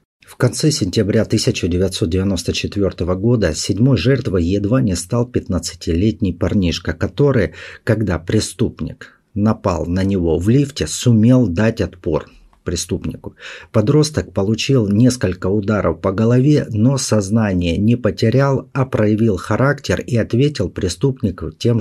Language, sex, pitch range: Russian, male, 95-125 Hz